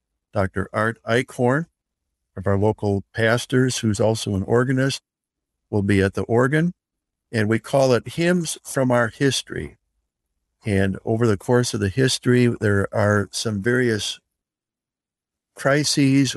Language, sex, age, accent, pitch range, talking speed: English, male, 60-79, American, 95-120 Hz, 130 wpm